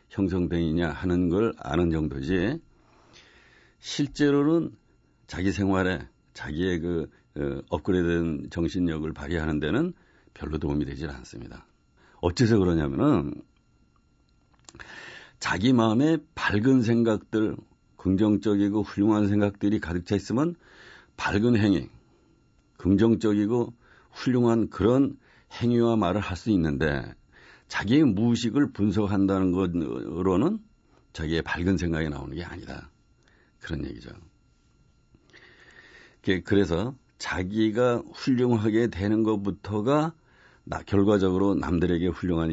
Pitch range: 85-115 Hz